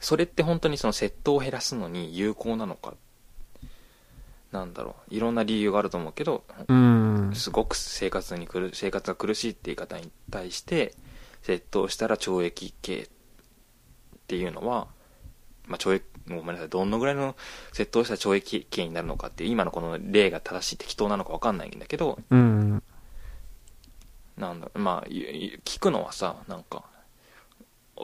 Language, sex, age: Japanese, male, 20-39